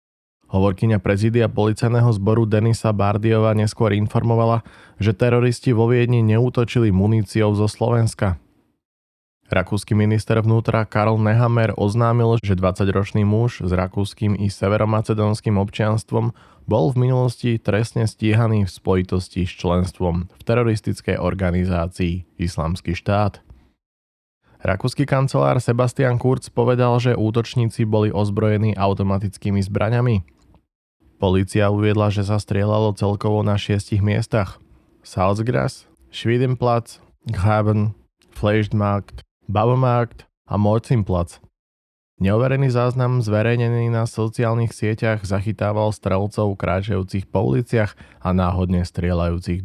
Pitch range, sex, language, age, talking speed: 95-115 Hz, male, Slovak, 20-39, 105 wpm